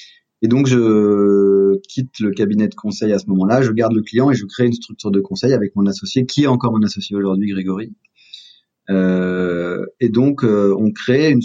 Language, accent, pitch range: French, French, 105-125 Hz